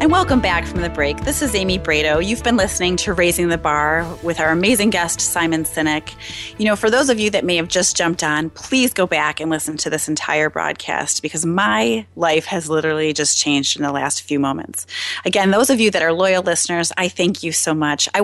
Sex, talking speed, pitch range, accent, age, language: female, 230 wpm, 155-185 Hz, American, 30-49, English